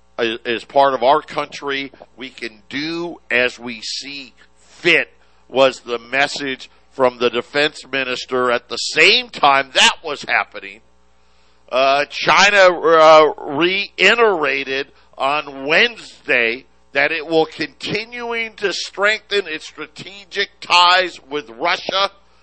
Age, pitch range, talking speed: 50-69, 140-195 Hz, 115 wpm